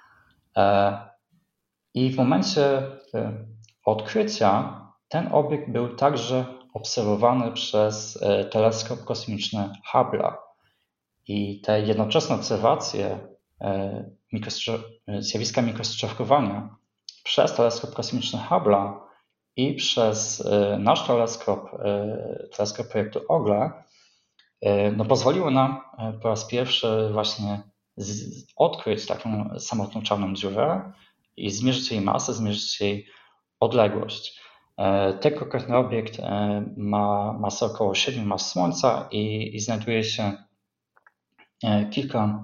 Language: Polish